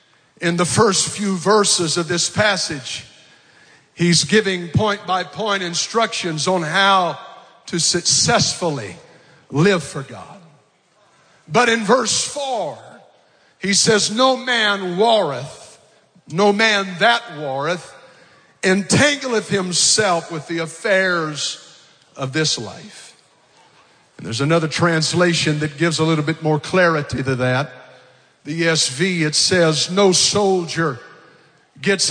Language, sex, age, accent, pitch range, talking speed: English, male, 50-69, American, 160-210 Hz, 115 wpm